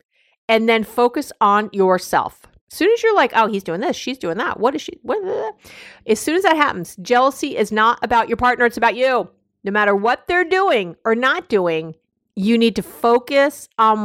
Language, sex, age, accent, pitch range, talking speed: English, female, 50-69, American, 185-245 Hz, 215 wpm